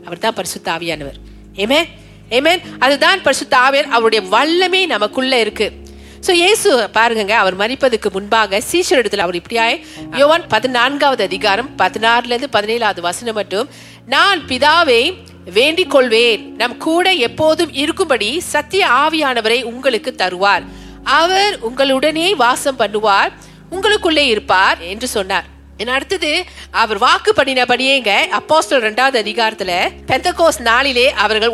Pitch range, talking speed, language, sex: 215-295 Hz, 70 wpm, Tamil, female